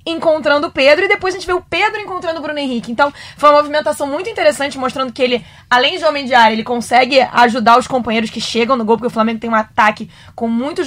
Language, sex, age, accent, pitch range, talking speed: Portuguese, female, 20-39, Brazilian, 230-285 Hz, 250 wpm